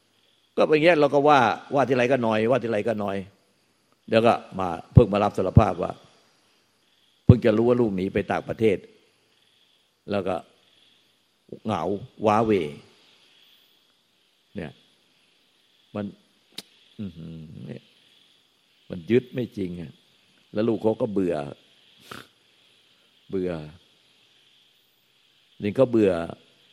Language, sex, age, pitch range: Thai, male, 60-79, 85-110 Hz